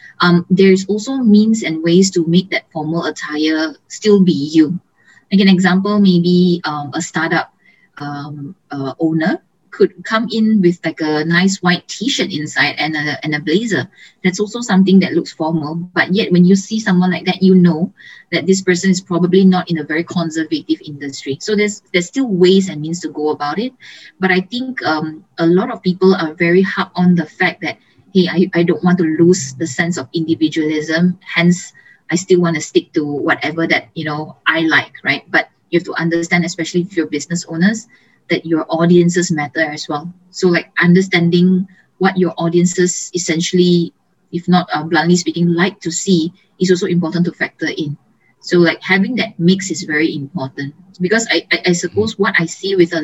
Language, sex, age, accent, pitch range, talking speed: English, female, 20-39, Malaysian, 160-185 Hz, 195 wpm